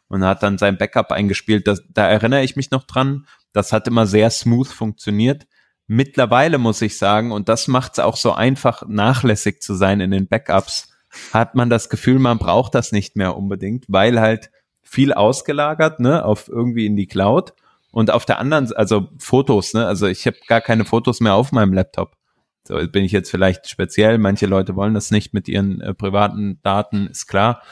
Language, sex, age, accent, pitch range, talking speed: German, male, 20-39, German, 100-125 Hz, 195 wpm